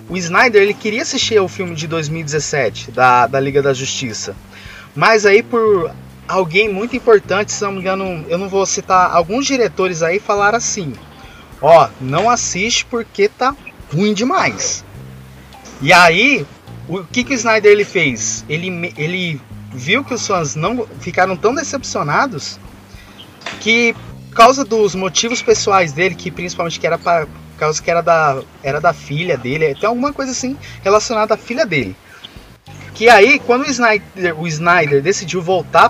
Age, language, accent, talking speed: 20-39, Portuguese, Brazilian, 160 wpm